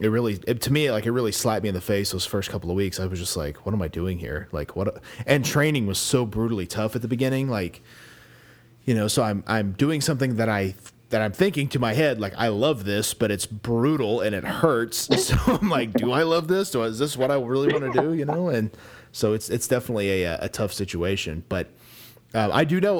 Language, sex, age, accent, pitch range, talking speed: English, male, 30-49, American, 100-130 Hz, 250 wpm